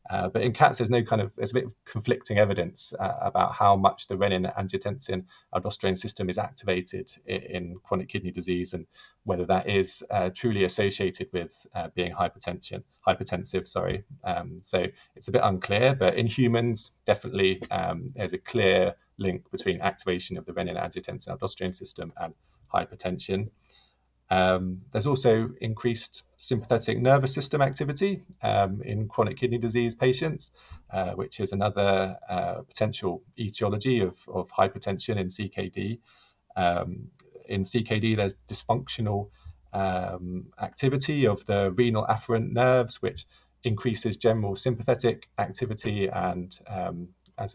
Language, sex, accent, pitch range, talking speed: English, male, British, 95-120 Hz, 145 wpm